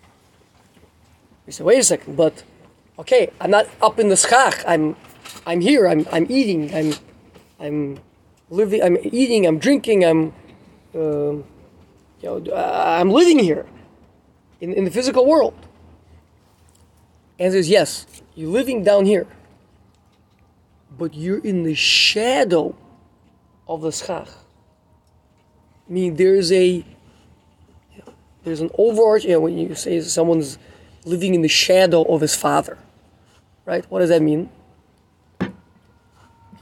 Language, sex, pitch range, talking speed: English, male, 145-210 Hz, 130 wpm